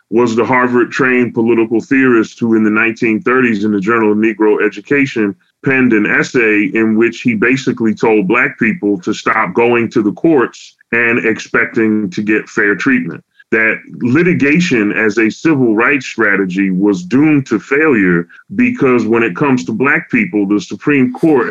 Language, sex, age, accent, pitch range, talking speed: English, female, 30-49, American, 105-125 Hz, 160 wpm